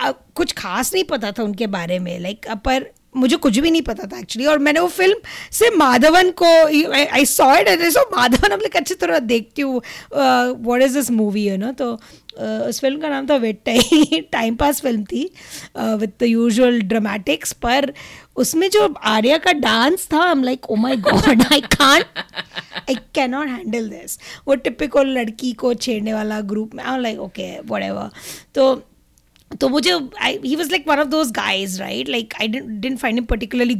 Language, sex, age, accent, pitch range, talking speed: Hindi, female, 20-39, native, 220-295 Hz, 180 wpm